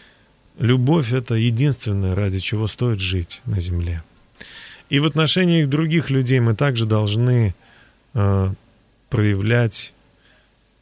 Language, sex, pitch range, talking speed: Russian, male, 105-135 Hz, 105 wpm